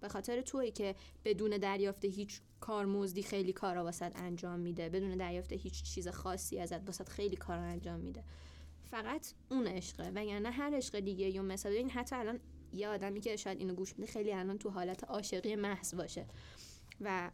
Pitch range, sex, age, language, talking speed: 190-235 Hz, female, 10-29, Persian, 190 wpm